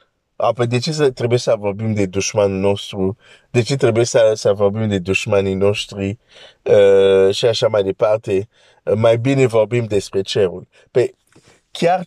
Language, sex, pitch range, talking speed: Romanian, male, 100-135 Hz, 155 wpm